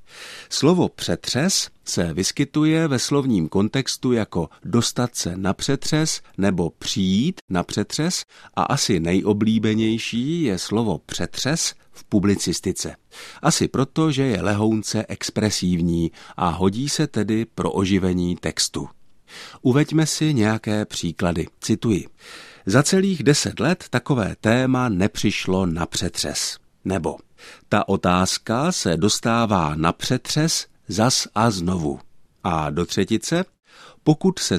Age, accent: 50-69, native